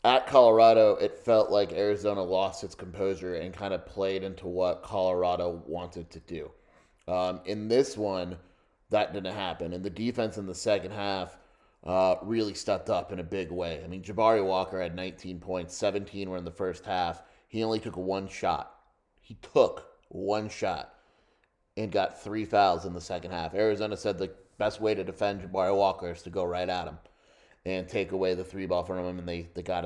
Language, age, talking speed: English, 30-49, 195 wpm